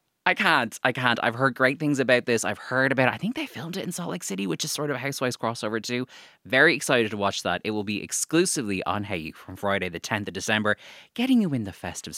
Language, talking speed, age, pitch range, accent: English, 265 wpm, 20-39, 105-150 Hz, Irish